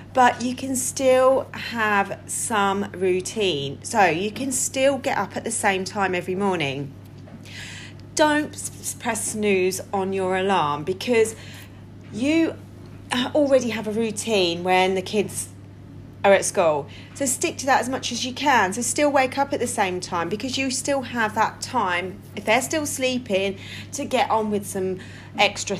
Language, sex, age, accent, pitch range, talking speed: English, female, 40-59, British, 180-245 Hz, 165 wpm